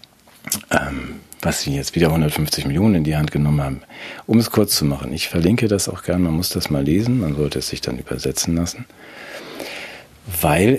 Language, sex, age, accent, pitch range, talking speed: German, male, 40-59, German, 75-100 Hz, 195 wpm